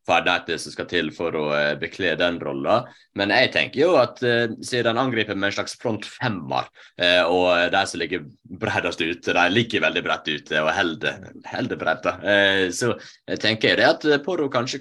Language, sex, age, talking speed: English, male, 30-49, 190 wpm